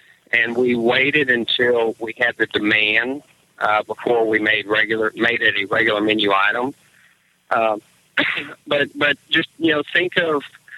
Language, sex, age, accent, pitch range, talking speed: English, male, 50-69, American, 115-140 Hz, 150 wpm